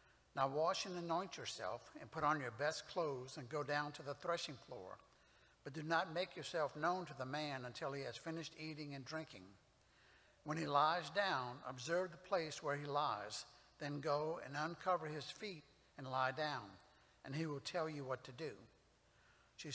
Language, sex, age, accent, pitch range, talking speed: English, male, 60-79, American, 140-175 Hz, 190 wpm